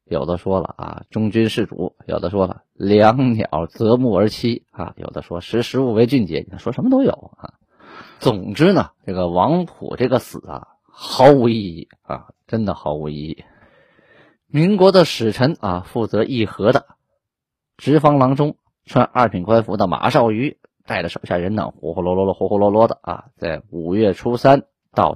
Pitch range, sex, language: 95-135 Hz, male, Chinese